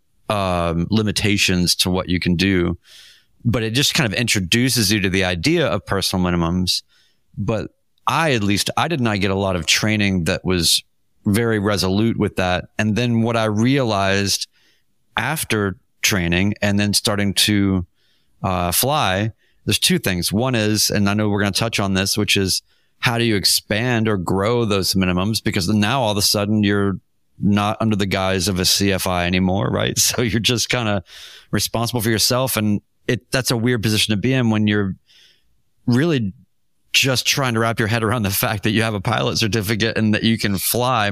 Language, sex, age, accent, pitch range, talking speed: English, male, 30-49, American, 95-115 Hz, 190 wpm